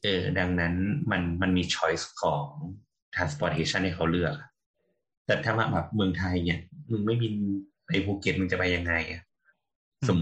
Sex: male